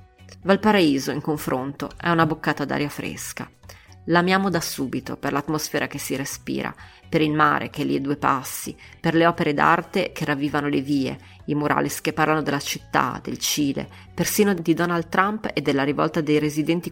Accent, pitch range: native, 140-170 Hz